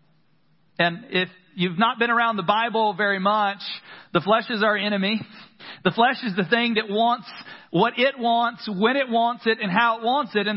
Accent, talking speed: American, 200 wpm